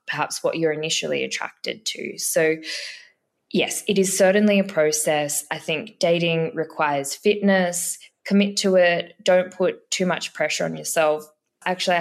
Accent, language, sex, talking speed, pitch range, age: Australian, English, female, 145 wpm, 155-195 Hz, 20-39